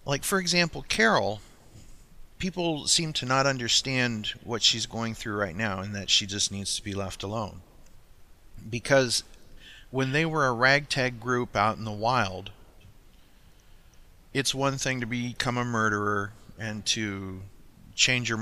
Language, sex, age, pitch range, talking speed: English, male, 40-59, 100-125 Hz, 150 wpm